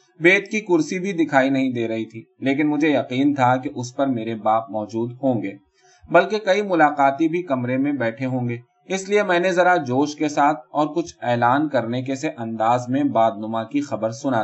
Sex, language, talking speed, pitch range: male, Urdu, 85 wpm, 125-175 Hz